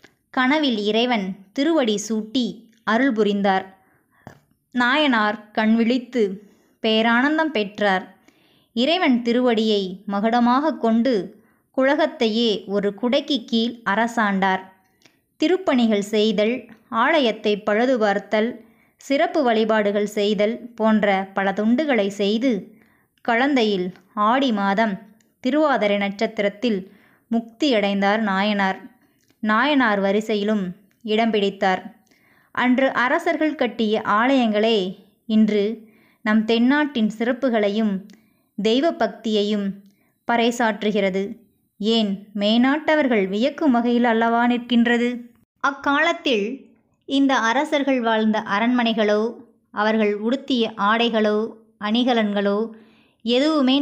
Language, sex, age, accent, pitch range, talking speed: Tamil, male, 20-39, native, 210-245 Hz, 75 wpm